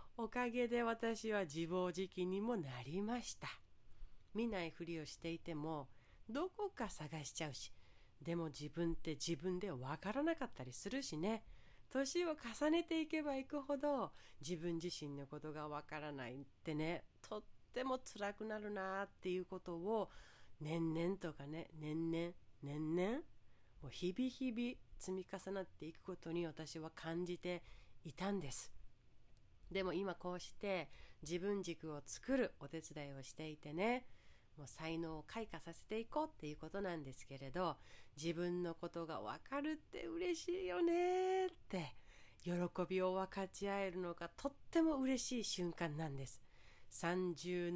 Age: 40-59